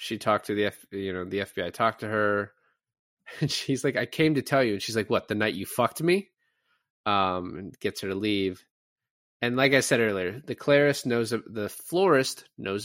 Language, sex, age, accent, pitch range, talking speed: English, male, 20-39, American, 95-120 Hz, 210 wpm